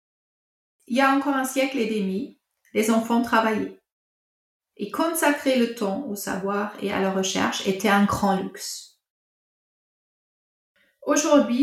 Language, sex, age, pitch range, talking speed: French, female, 30-49, 200-270 Hz, 135 wpm